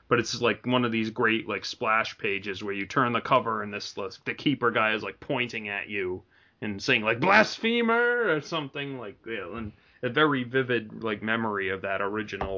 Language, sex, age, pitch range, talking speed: English, male, 30-49, 100-125 Hz, 215 wpm